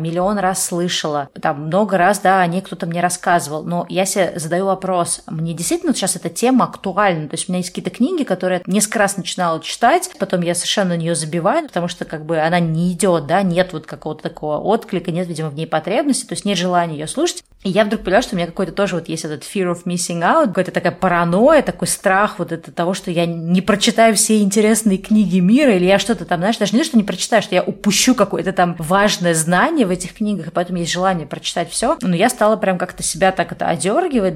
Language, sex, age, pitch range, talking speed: Russian, female, 20-39, 170-205 Hz, 230 wpm